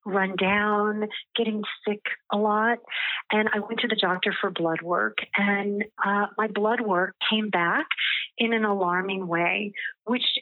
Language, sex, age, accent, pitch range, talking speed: English, female, 40-59, American, 190-235 Hz, 155 wpm